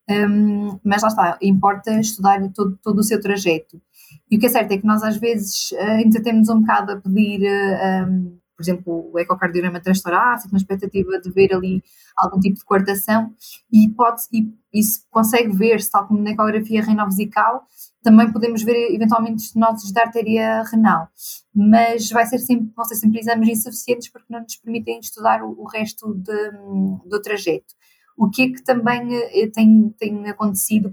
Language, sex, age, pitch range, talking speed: Portuguese, female, 20-39, 195-225 Hz, 170 wpm